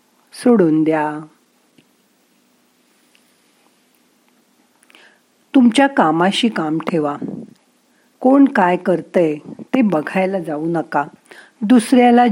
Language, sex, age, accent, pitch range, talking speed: Marathi, female, 50-69, native, 175-255 Hz, 70 wpm